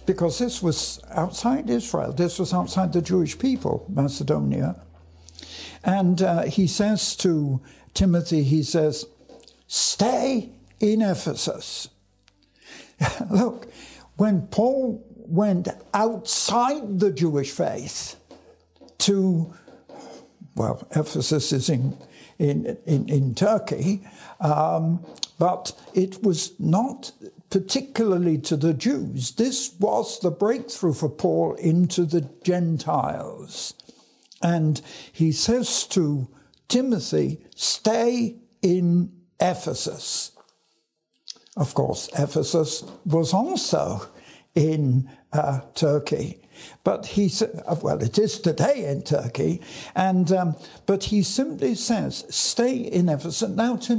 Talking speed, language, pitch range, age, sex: 105 wpm, English, 155-210 Hz, 60-79, male